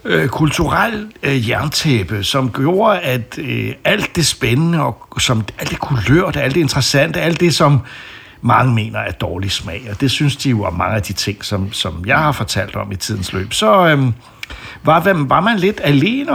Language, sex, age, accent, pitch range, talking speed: Danish, male, 60-79, native, 110-155 Hz, 195 wpm